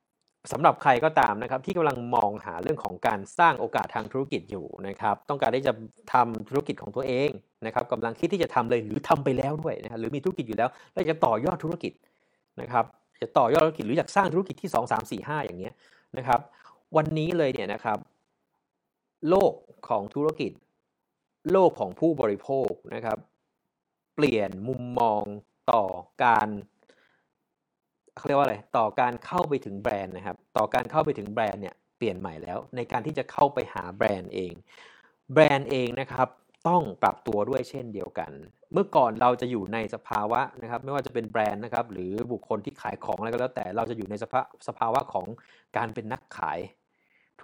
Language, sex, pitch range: Thai, male, 110-140 Hz